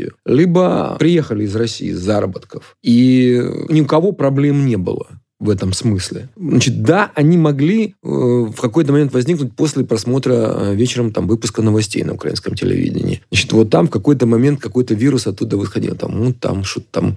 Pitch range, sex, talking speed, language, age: 115-145 Hz, male, 175 wpm, Russian, 30-49